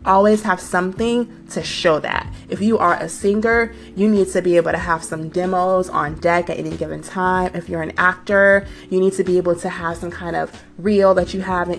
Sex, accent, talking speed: female, American, 230 wpm